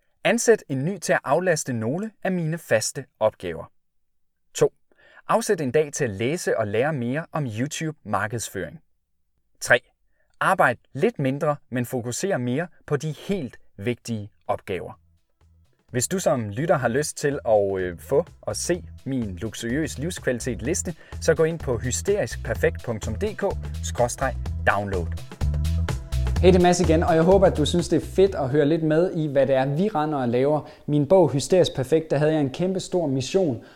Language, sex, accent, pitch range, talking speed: Danish, male, native, 115-155 Hz, 160 wpm